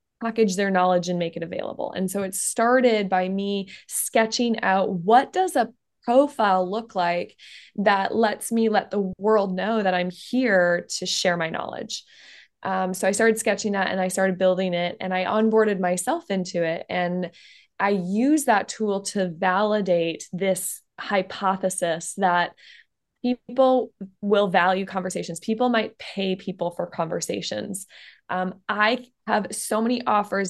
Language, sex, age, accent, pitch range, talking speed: English, female, 20-39, American, 185-220 Hz, 155 wpm